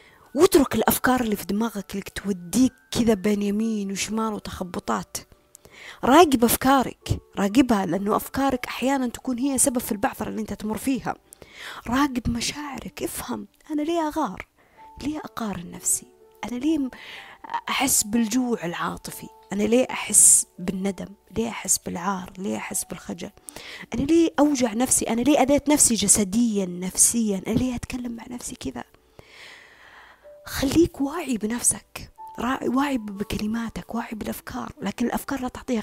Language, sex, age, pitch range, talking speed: Arabic, female, 30-49, 210-275 Hz, 130 wpm